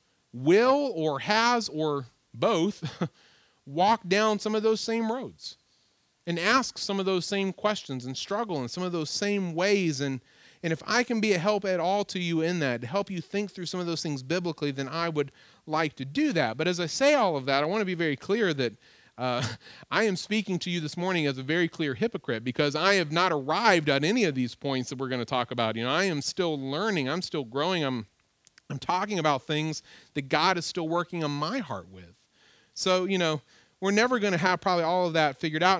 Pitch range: 150-195 Hz